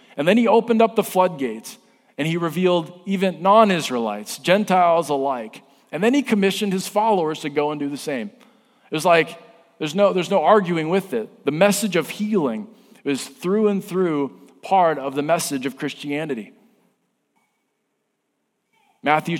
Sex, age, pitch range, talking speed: male, 40-59, 145-185 Hz, 160 wpm